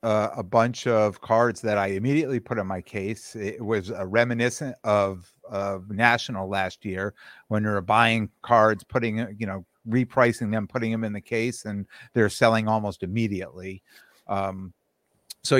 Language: English